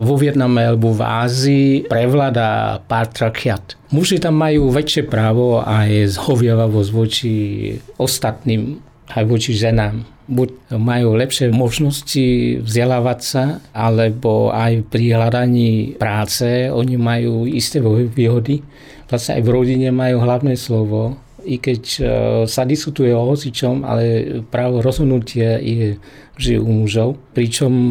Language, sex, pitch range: English, male, 115-130 Hz